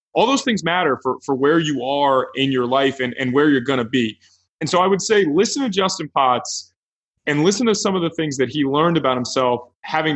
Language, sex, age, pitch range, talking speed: English, male, 20-39, 125-155 Hz, 240 wpm